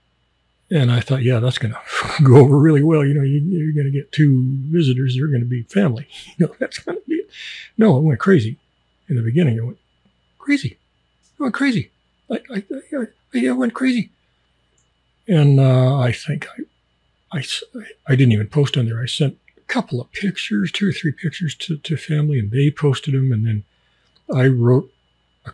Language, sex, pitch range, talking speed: English, male, 115-170 Hz, 200 wpm